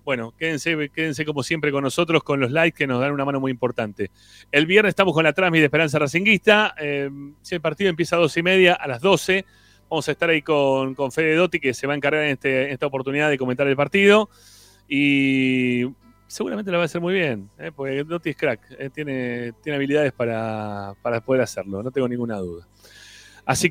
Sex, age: male, 30-49